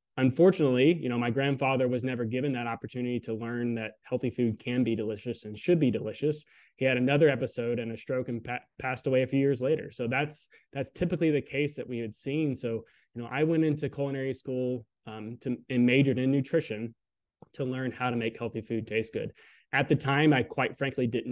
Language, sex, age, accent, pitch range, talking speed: English, male, 20-39, American, 115-135 Hz, 215 wpm